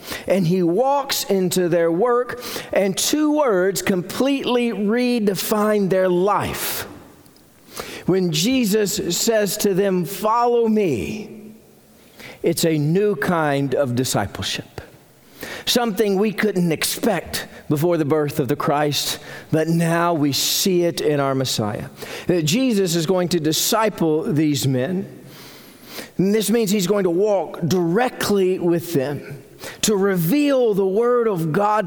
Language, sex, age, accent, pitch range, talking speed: English, male, 50-69, American, 170-225 Hz, 130 wpm